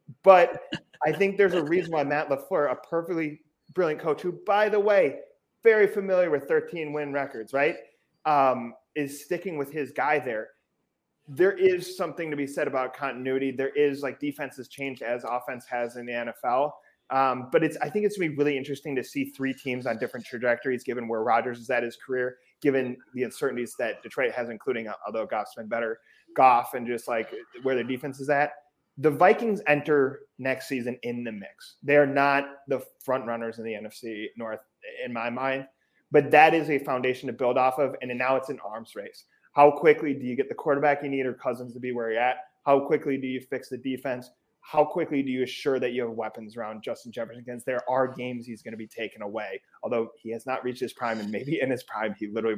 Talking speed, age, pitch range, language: 215 wpm, 30-49, 125-150 Hz, English